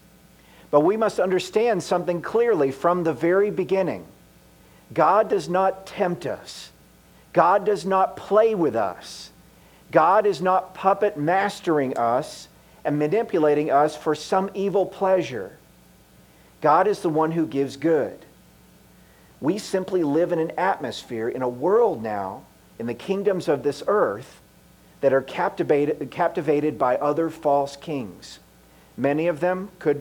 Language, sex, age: English, male, 50-69